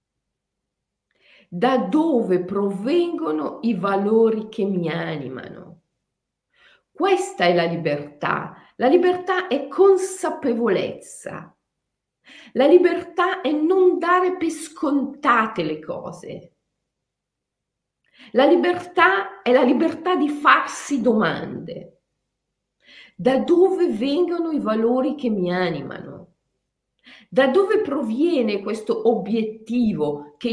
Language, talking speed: Italian, 90 wpm